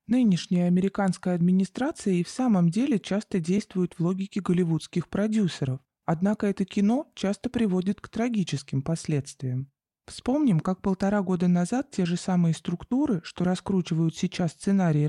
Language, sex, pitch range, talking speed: Russian, male, 170-205 Hz, 135 wpm